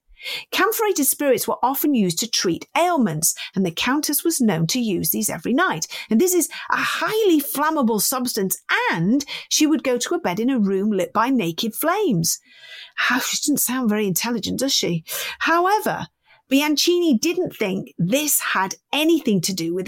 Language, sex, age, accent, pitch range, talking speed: English, female, 40-59, British, 205-285 Hz, 170 wpm